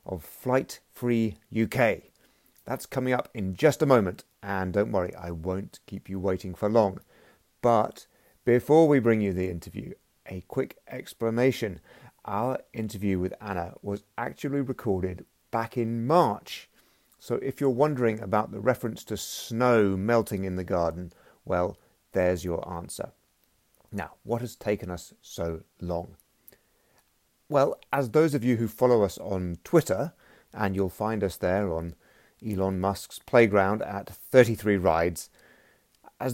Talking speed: 145 wpm